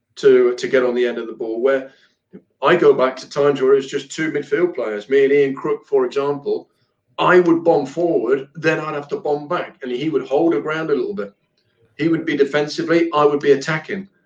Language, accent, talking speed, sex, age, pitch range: English, British, 230 wpm, male, 40-59, 140-185 Hz